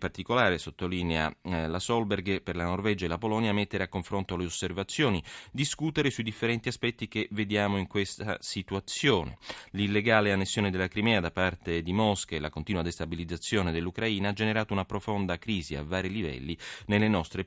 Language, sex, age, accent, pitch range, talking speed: Italian, male, 30-49, native, 90-115 Hz, 170 wpm